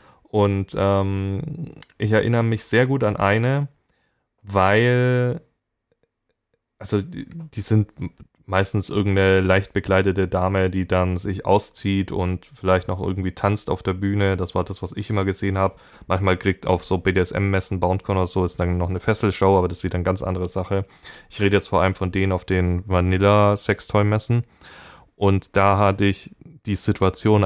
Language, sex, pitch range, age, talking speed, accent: German, male, 95-120 Hz, 10-29, 165 wpm, German